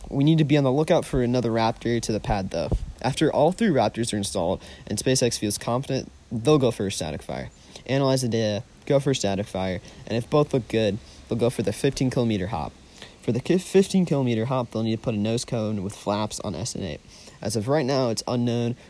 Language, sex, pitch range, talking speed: English, male, 105-130 Hz, 230 wpm